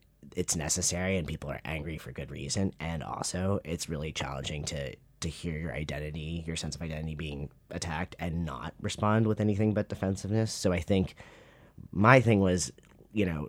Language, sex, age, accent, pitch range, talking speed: English, male, 30-49, American, 80-100 Hz, 180 wpm